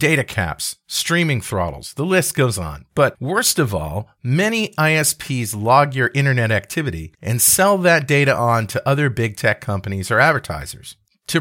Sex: male